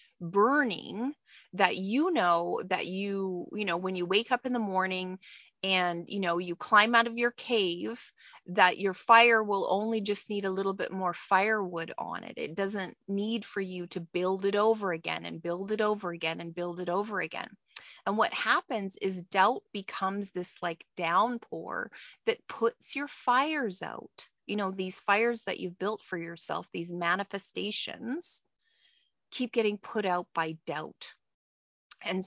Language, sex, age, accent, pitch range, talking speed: English, female, 30-49, American, 180-220 Hz, 165 wpm